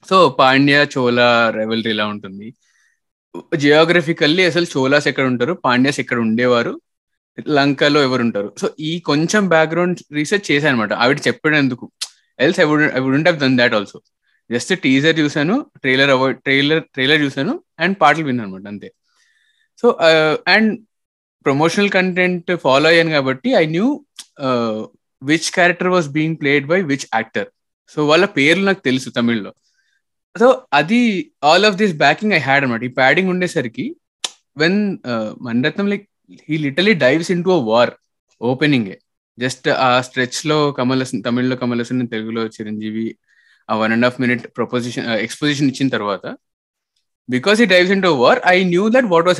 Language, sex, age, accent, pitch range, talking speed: Telugu, male, 20-39, native, 125-170 Hz, 145 wpm